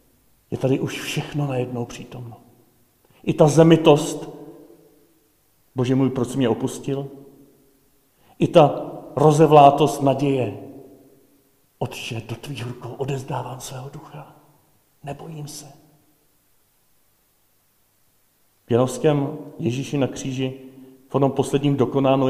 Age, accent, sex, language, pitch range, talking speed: 40-59, native, male, Czech, 120-140 Hz, 95 wpm